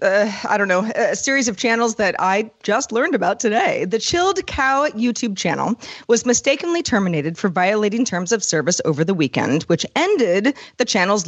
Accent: American